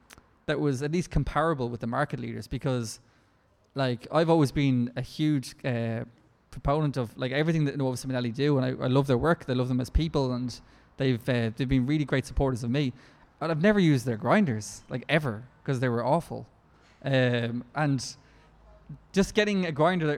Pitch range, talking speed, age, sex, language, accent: 120-145 Hz, 195 wpm, 20-39, male, English, Irish